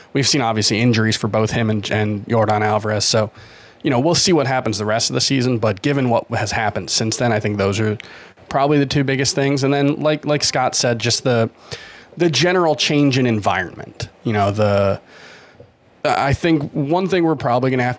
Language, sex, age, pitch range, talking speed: English, male, 30-49, 110-140 Hz, 215 wpm